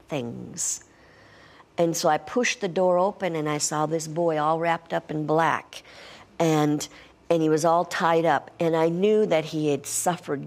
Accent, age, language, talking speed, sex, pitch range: American, 50-69, English, 185 wpm, female, 155-180 Hz